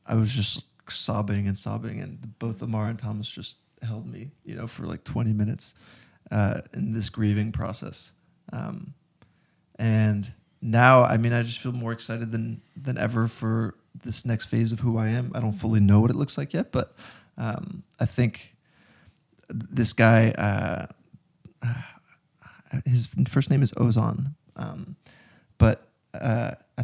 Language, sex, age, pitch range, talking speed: English, male, 20-39, 110-130 Hz, 160 wpm